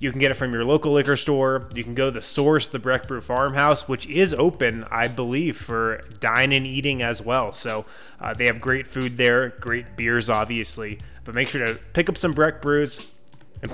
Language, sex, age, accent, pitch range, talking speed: English, male, 20-39, American, 120-150 Hz, 220 wpm